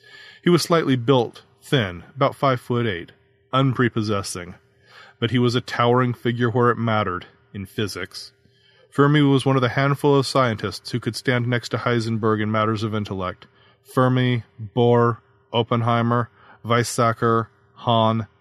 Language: English